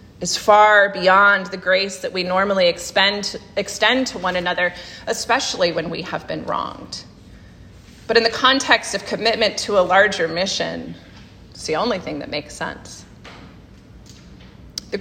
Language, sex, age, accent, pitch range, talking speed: English, female, 30-49, American, 180-225 Hz, 150 wpm